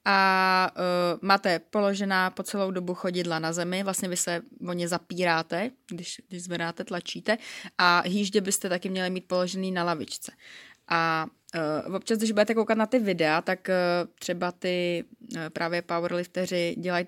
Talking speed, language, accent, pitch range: 160 wpm, Czech, native, 170-190 Hz